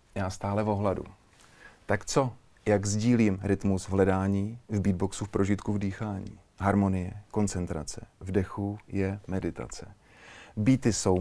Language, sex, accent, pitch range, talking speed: Czech, male, native, 95-120 Hz, 125 wpm